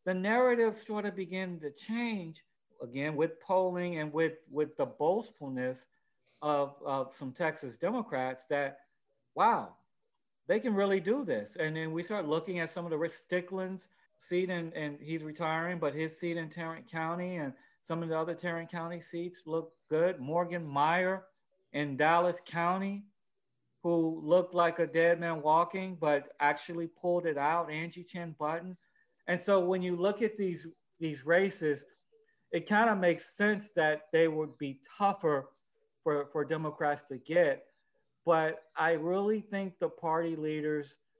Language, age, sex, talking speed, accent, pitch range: English, 40-59, male, 160 wpm, American, 150-185 Hz